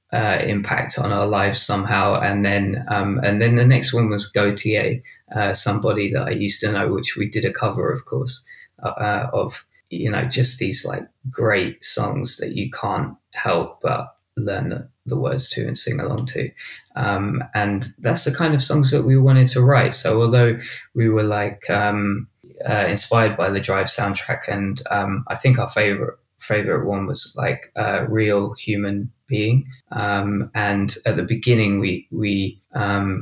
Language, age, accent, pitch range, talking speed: English, 20-39, British, 100-125 Hz, 180 wpm